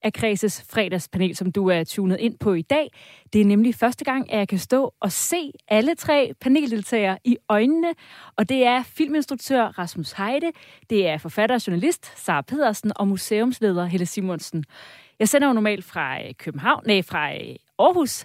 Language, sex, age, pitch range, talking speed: Danish, female, 30-49, 195-275 Hz, 175 wpm